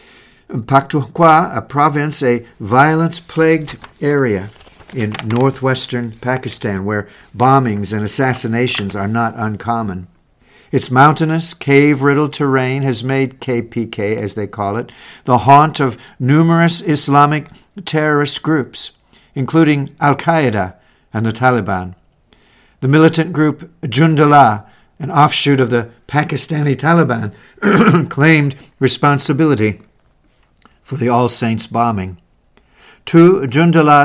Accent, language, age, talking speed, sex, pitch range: American, English, 60-79, 100 wpm, male, 115-150 Hz